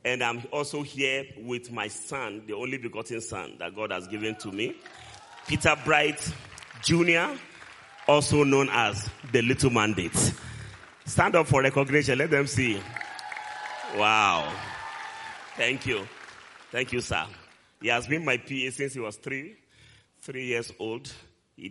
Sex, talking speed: male, 145 wpm